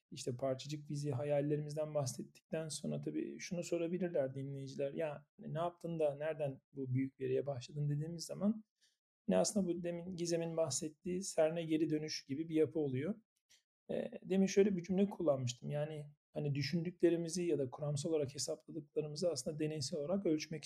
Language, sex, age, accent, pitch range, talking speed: Turkish, male, 40-59, native, 140-170 Hz, 150 wpm